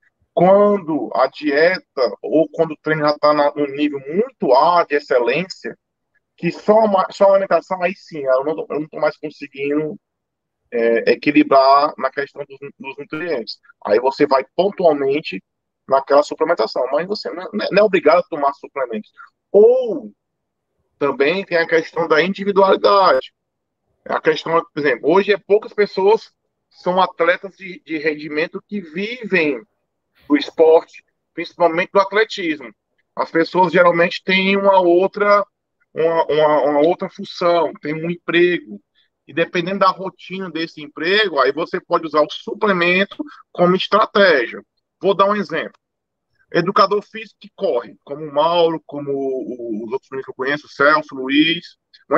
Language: Portuguese